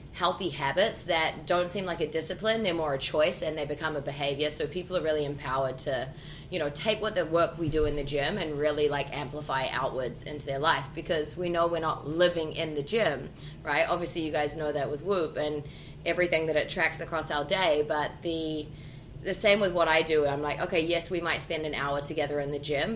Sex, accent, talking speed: female, Australian, 230 wpm